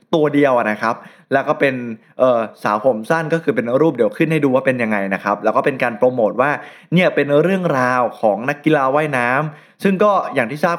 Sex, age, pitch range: male, 20-39, 130-170 Hz